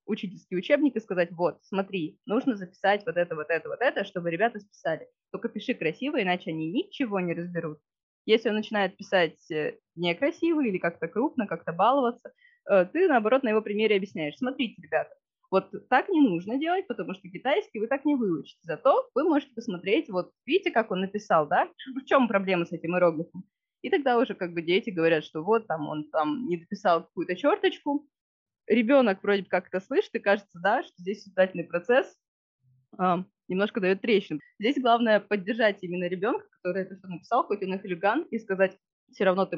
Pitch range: 175-235 Hz